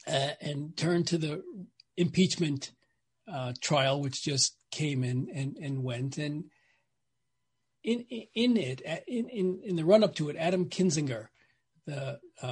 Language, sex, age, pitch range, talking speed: English, male, 40-59, 135-180 Hz, 135 wpm